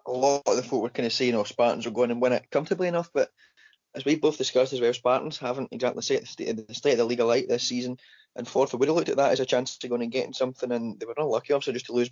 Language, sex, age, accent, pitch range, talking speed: English, male, 20-39, British, 120-155 Hz, 310 wpm